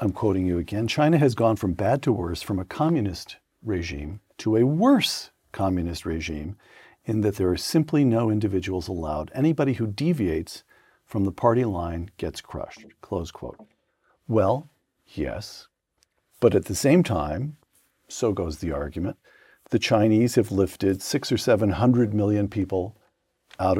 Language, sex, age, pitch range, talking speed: English, male, 50-69, 95-130 Hz, 150 wpm